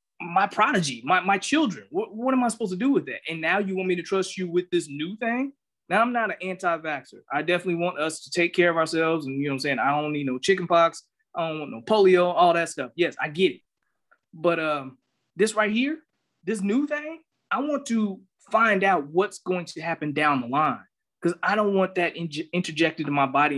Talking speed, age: 240 wpm, 20-39